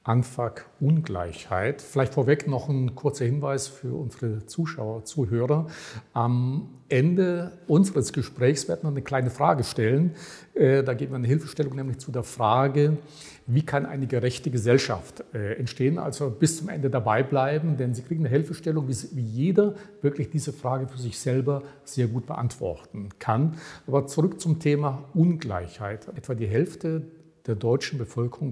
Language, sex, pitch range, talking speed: German, male, 120-145 Hz, 150 wpm